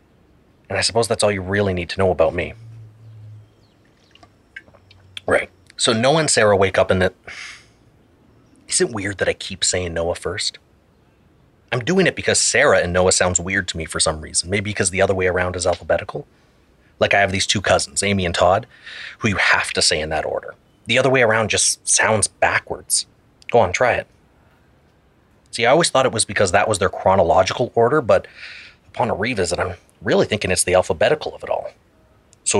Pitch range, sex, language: 95-110 Hz, male, English